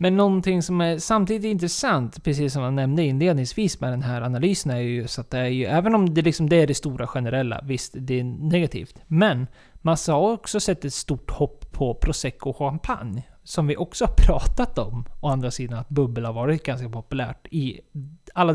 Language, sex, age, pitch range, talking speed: Swedish, male, 20-39, 130-170 Hz, 205 wpm